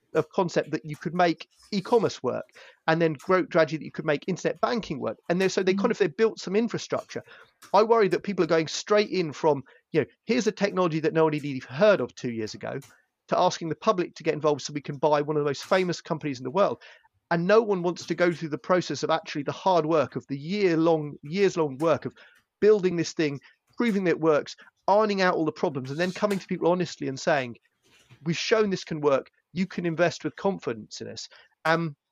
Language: English